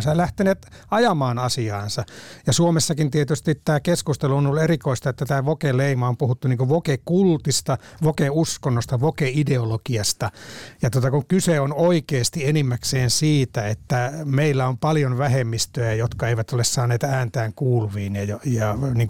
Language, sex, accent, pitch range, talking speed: Finnish, male, native, 115-145 Hz, 140 wpm